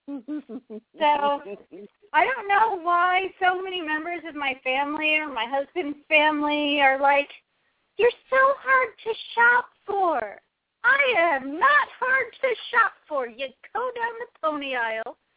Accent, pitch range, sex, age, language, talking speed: American, 260-380 Hz, female, 40-59, English, 140 wpm